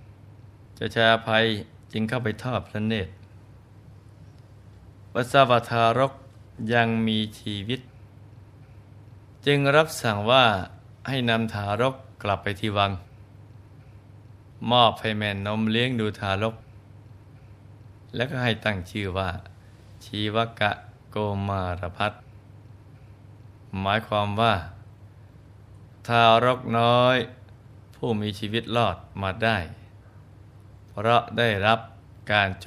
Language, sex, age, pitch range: Thai, male, 20-39, 100-115 Hz